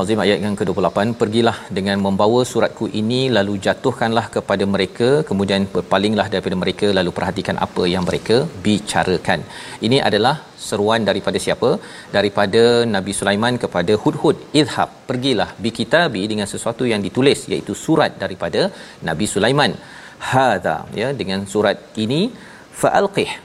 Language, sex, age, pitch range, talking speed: Malayalam, male, 40-59, 100-130 Hz, 130 wpm